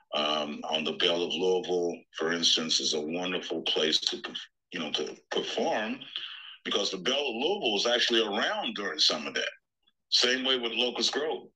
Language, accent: English, American